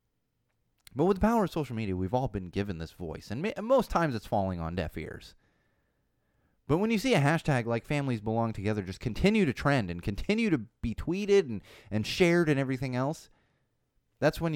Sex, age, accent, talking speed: male, 30-49, American, 200 wpm